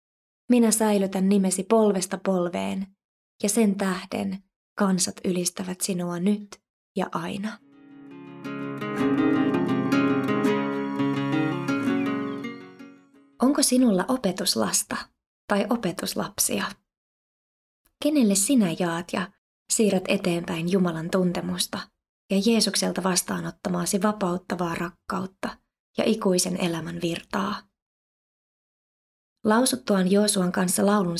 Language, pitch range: Finnish, 180-210 Hz